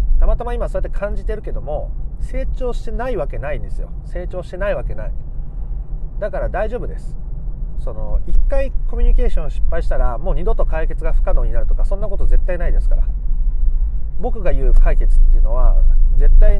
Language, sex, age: Japanese, male, 30-49